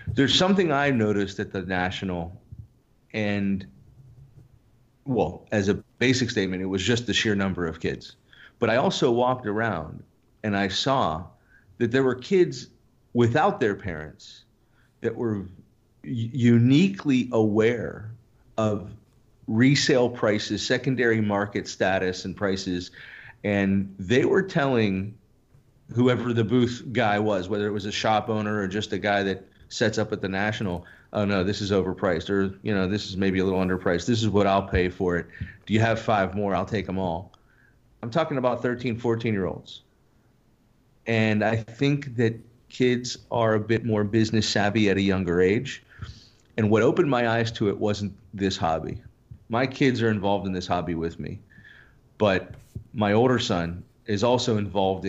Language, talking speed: English, 165 wpm